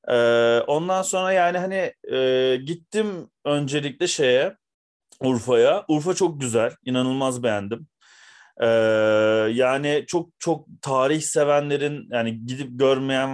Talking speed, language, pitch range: 110 wpm, Turkish, 125-155 Hz